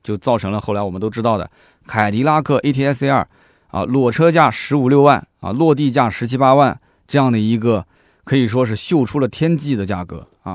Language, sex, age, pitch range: Chinese, male, 20-39, 100-140 Hz